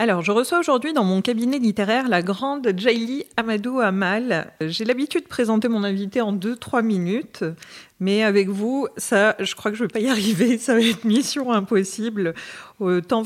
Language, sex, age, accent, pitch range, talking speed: French, female, 40-59, French, 180-230 Hz, 185 wpm